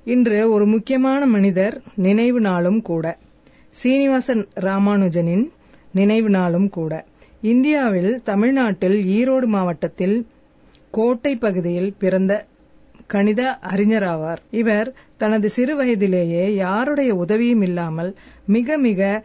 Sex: female